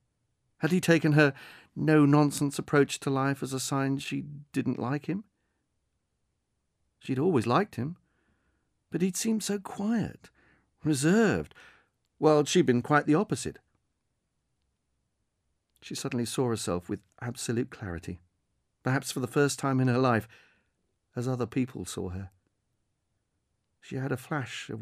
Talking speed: 135 wpm